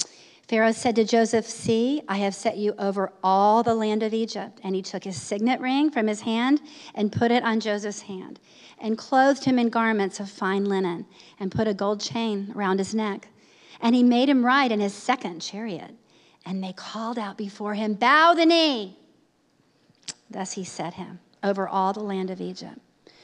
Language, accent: English, American